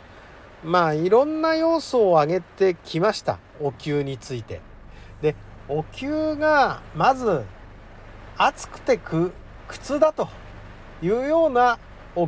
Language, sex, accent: Japanese, male, native